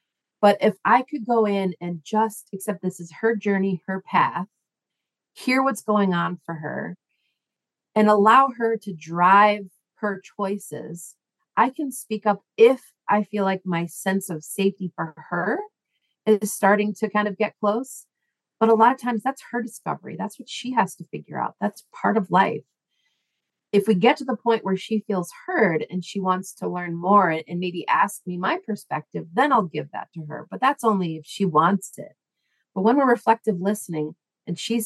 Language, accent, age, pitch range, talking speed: English, American, 40-59, 170-220 Hz, 190 wpm